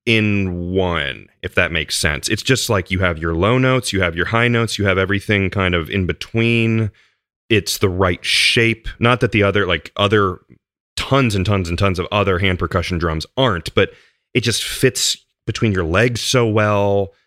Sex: male